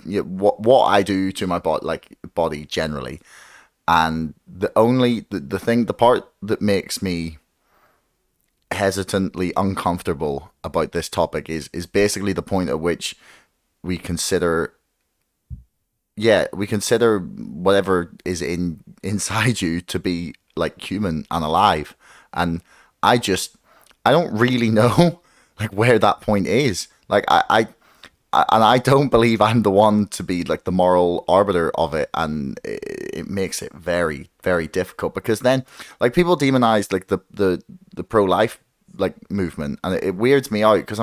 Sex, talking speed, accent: male, 160 wpm, British